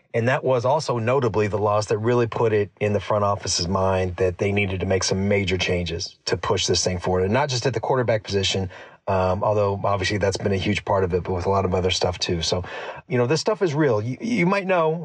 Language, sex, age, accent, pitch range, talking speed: English, male, 30-49, American, 100-130 Hz, 260 wpm